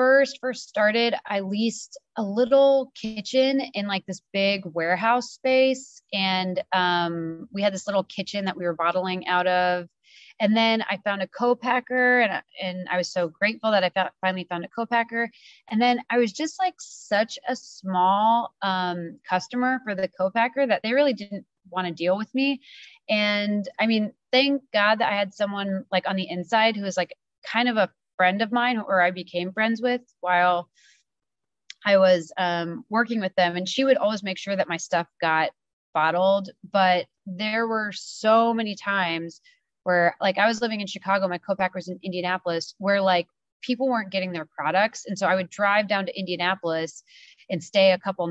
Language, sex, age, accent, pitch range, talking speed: English, female, 30-49, American, 175-220 Hz, 185 wpm